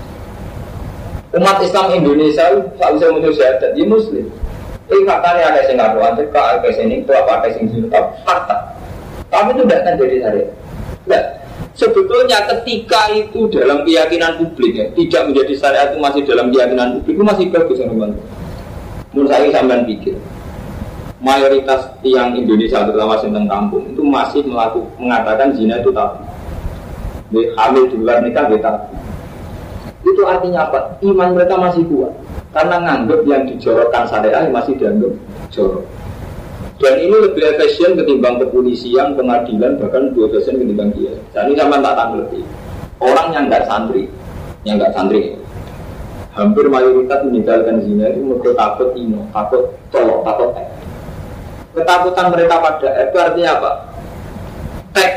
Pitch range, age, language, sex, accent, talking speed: 110-180 Hz, 40-59, Indonesian, male, native, 140 wpm